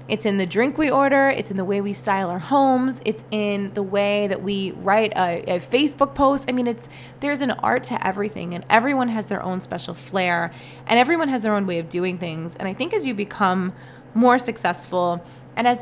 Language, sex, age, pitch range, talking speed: English, female, 20-39, 185-240 Hz, 225 wpm